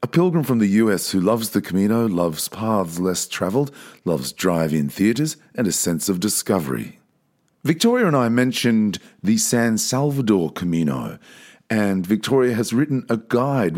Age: 40-59